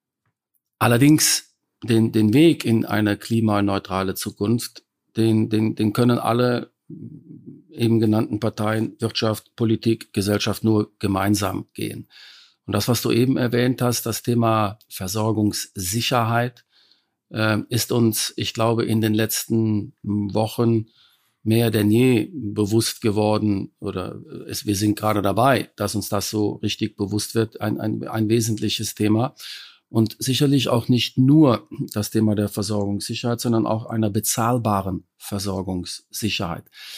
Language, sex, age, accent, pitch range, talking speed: German, male, 50-69, German, 105-120 Hz, 125 wpm